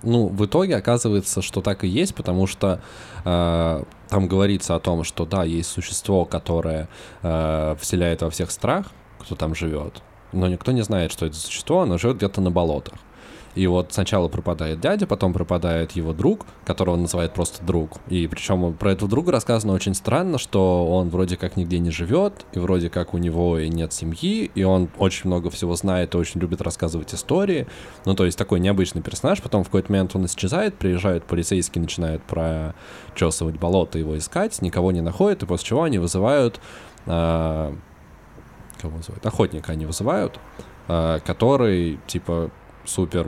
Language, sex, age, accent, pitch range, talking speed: Russian, male, 20-39, native, 85-95 Hz, 175 wpm